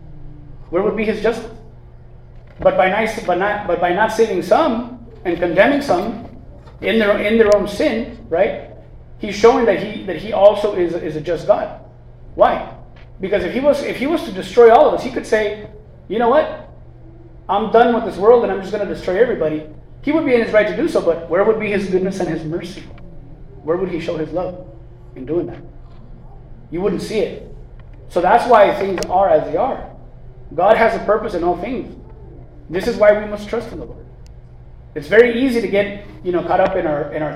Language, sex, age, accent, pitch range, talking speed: English, male, 30-49, American, 160-215 Hz, 220 wpm